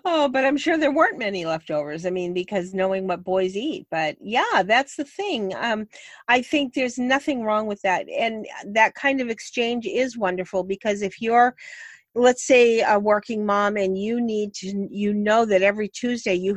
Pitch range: 175-220 Hz